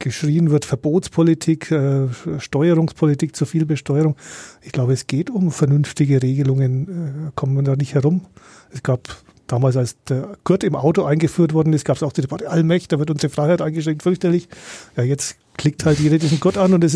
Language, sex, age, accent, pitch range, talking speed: German, male, 40-59, German, 135-160 Hz, 190 wpm